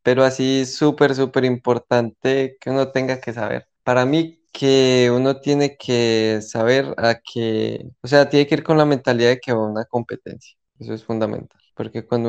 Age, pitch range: 20-39, 110-125 Hz